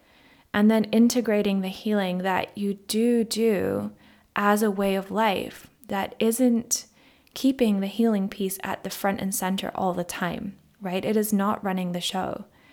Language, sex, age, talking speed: English, female, 20-39, 165 wpm